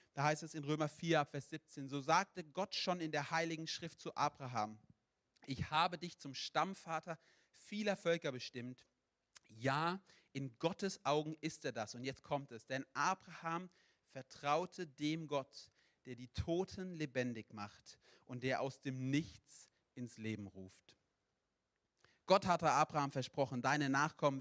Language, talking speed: German, 150 wpm